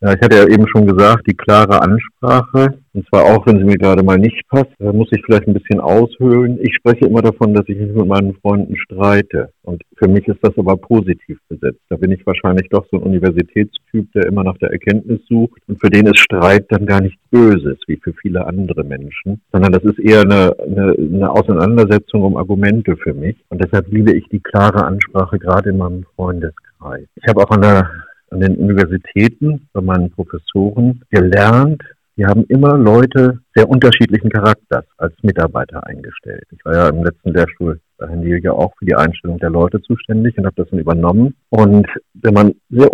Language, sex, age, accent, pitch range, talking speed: German, male, 50-69, German, 90-110 Hz, 200 wpm